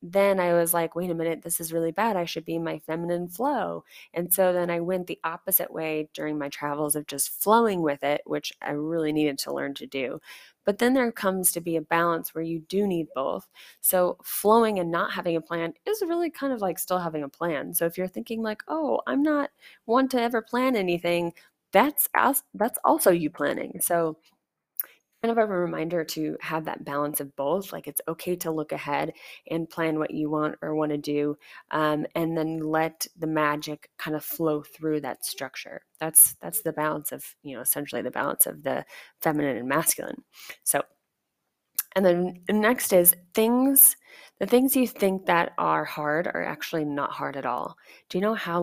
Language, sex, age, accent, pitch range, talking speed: English, female, 20-39, American, 155-195 Hz, 200 wpm